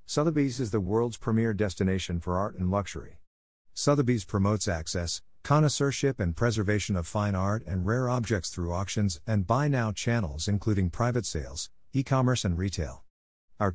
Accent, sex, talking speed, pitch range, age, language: American, male, 155 wpm, 90-120 Hz, 50-69, English